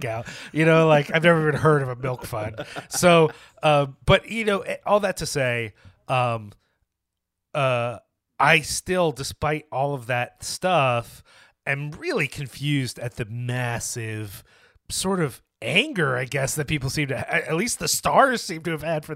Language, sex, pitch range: English, male, 120-150 Hz